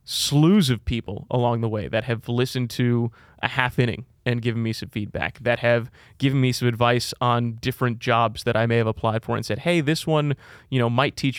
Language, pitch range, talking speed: English, 115-130 Hz, 215 wpm